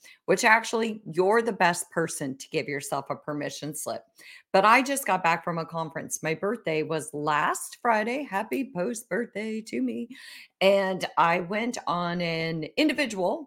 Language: English